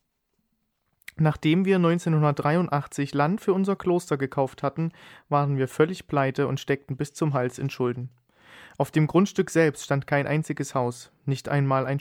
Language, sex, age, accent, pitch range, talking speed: German, male, 40-59, German, 130-160 Hz, 155 wpm